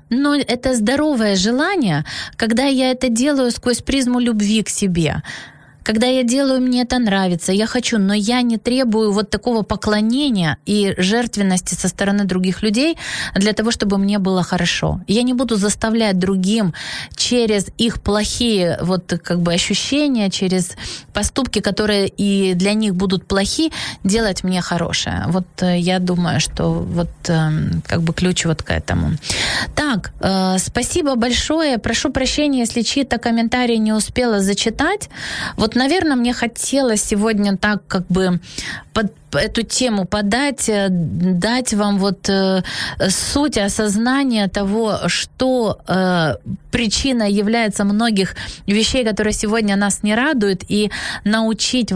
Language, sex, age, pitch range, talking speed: Ukrainian, female, 20-39, 190-240 Hz, 135 wpm